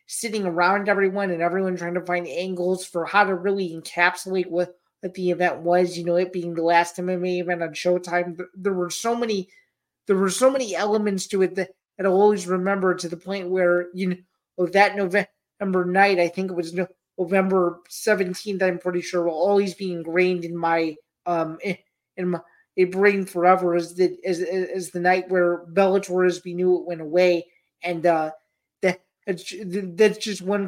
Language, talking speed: English, 185 wpm